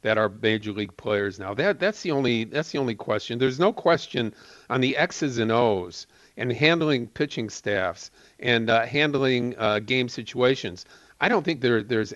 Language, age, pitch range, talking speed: English, 50-69, 110-135 Hz, 185 wpm